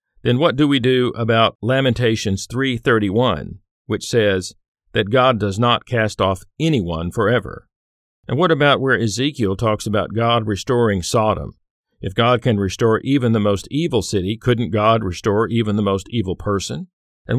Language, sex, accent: English, male, American